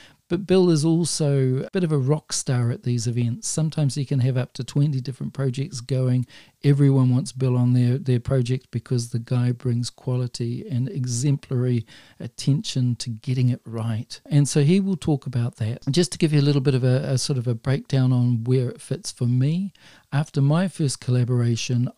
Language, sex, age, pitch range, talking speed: English, male, 40-59, 125-140 Hz, 200 wpm